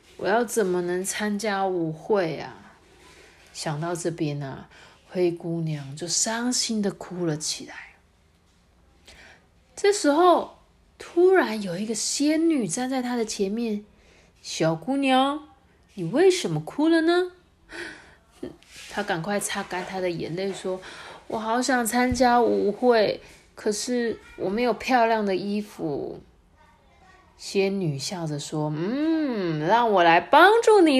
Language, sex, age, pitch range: Chinese, female, 30-49, 175-290 Hz